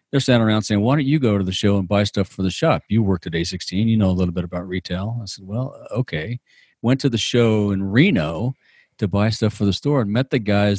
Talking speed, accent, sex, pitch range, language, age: 265 wpm, American, male, 95-115 Hz, English, 40-59